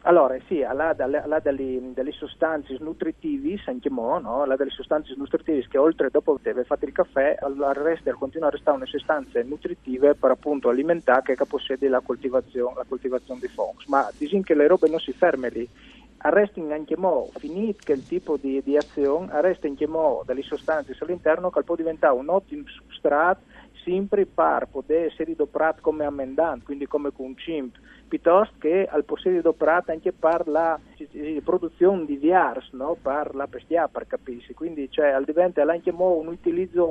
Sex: male